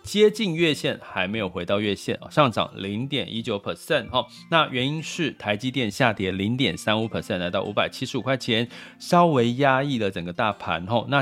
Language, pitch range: Chinese, 100-145 Hz